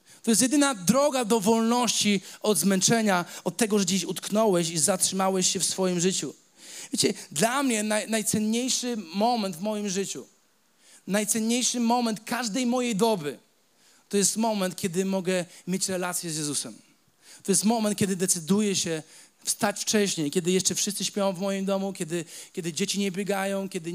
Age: 40-59